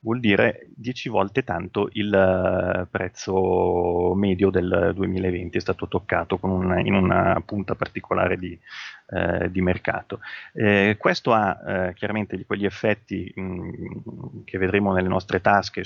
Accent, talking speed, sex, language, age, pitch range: native, 120 wpm, male, Italian, 30-49, 90-105 Hz